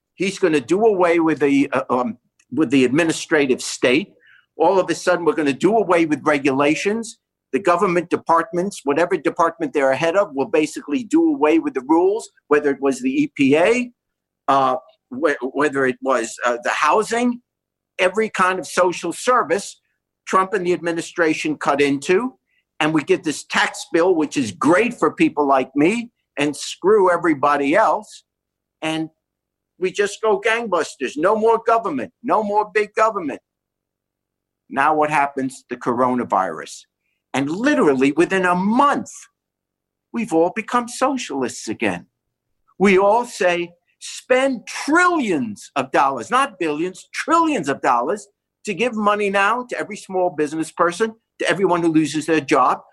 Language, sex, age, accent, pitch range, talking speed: English, male, 50-69, American, 150-225 Hz, 150 wpm